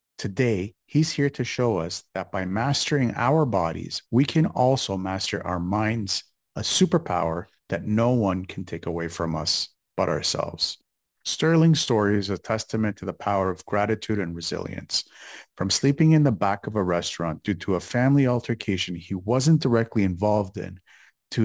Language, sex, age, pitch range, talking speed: English, male, 50-69, 95-125 Hz, 170 wpm